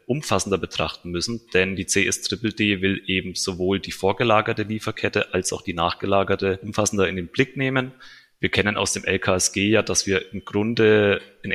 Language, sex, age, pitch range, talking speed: German, male, 30-49, 95-105 Hz, 165 wpm